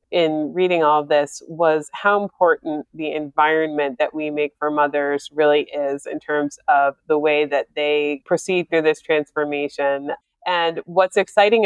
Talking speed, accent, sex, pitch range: 155 wpm, American, female, 150-175 Hz